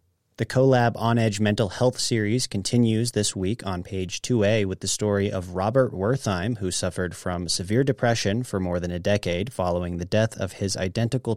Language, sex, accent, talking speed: English, male, American, 180 wpm